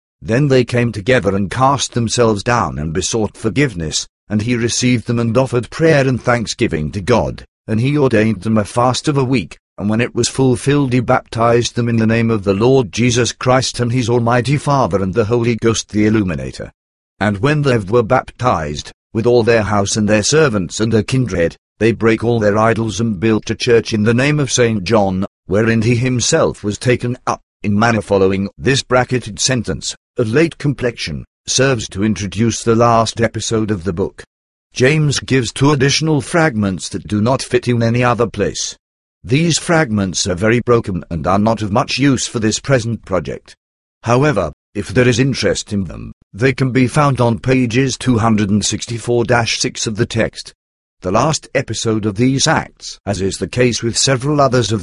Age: 50-69